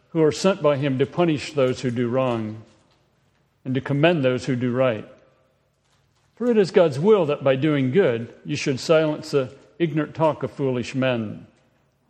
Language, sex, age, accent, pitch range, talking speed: English, male, 50-69, American, 125-150 Hz, 180 wpm